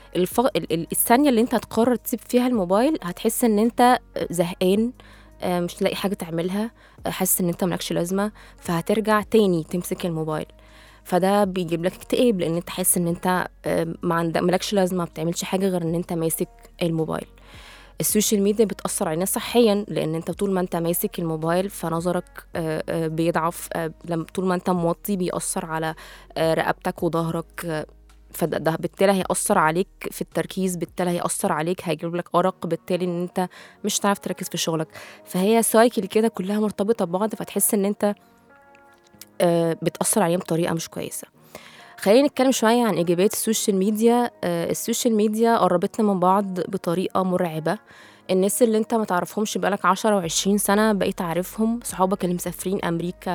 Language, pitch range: Arabic, 170-210 Hz